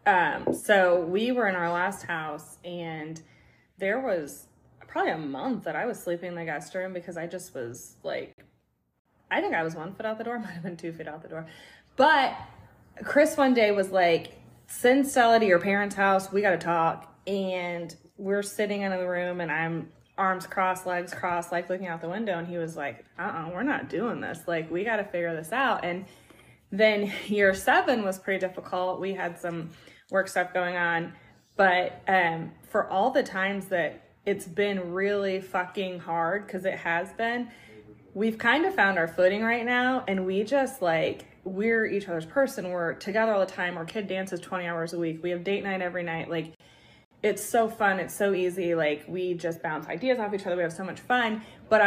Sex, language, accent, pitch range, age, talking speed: female, English, American, 170-210 Hz, 20-39, 205 wpm